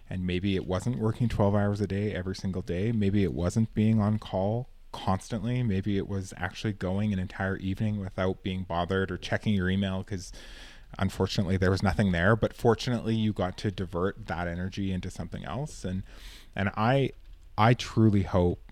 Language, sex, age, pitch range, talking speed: English, male, 20-39, 90-110 Hz, 185 wpm